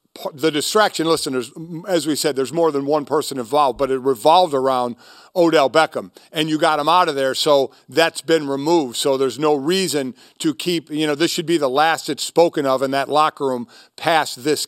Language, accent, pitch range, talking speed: English, American, 150-200 Hz, 210 wpm